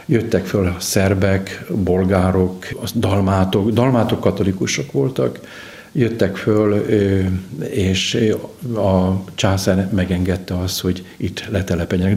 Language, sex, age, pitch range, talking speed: Hungarian, male, 50-69, 95-115 Hz, 105 wpm